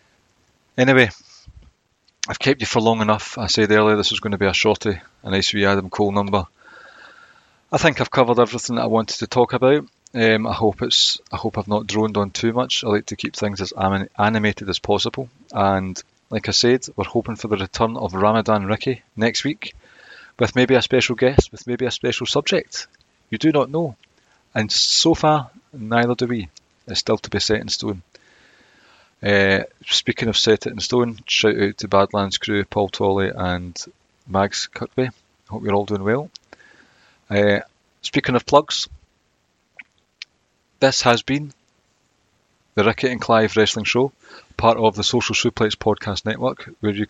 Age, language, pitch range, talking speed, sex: 30-49, English, 105-125 Hz, 180 wpm, male